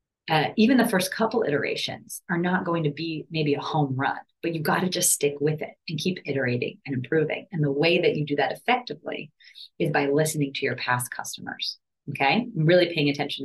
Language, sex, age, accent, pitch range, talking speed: English, female, 30-49, American, 145-205 Hz, 215 wpm